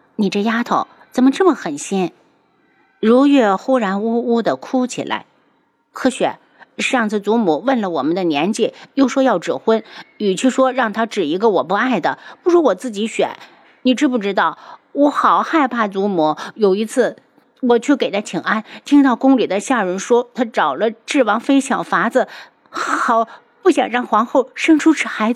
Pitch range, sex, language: 200-260 Hz, female, Chinese